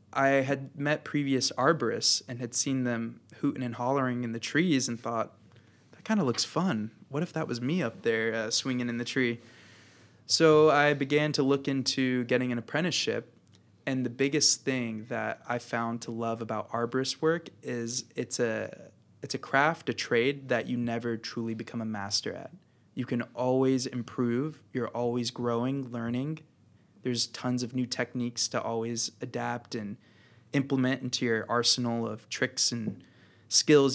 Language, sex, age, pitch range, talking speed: English, male, 20-39, 115-130 Hz, 170 wpm